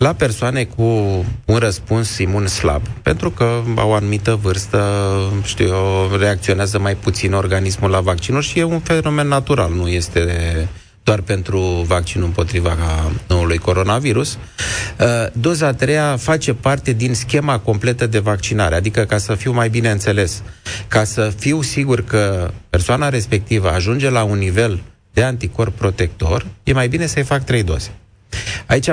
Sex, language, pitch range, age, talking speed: male, Romanian, 95-120 Hz, 30-49, 150 wpm